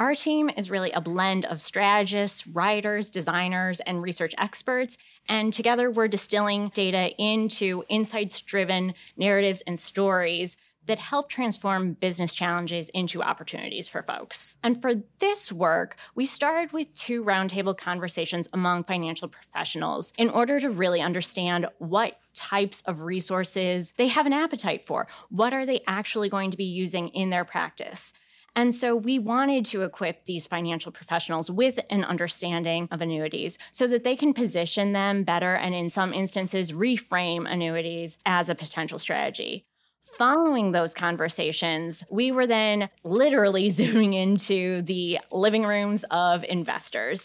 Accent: American